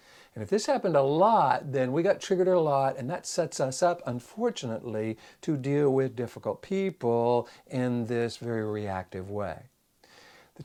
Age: 60-79